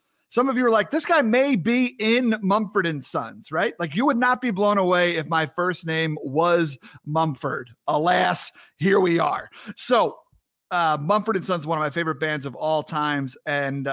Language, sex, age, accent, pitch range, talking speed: English, male, 30-49, American, 150-195 Hz, 195 wpm